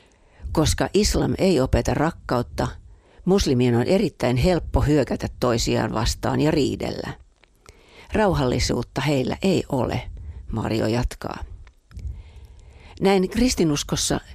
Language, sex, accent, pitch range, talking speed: Finnish, female, native, 85-145 Hz, 90 wpm